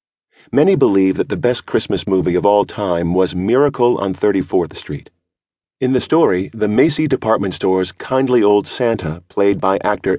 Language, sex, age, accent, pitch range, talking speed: English, male, 50-69, American, 90-115 Hz, 165 wpm